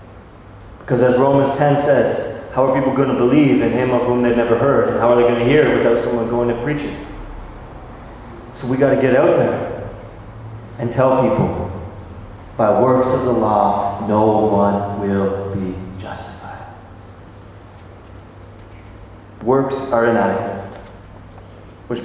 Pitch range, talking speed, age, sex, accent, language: 100-125 Hz, 150 wpm, 30-49, male, American, English